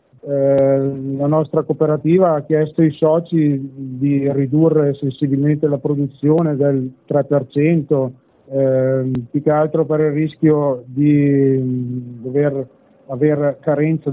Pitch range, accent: 135-155 Hz, native